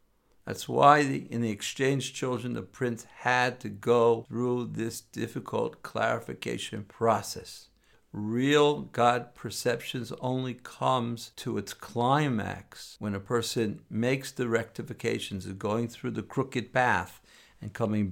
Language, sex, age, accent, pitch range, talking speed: English, male, 60-79, American, 110-130 Hz, 125 wpm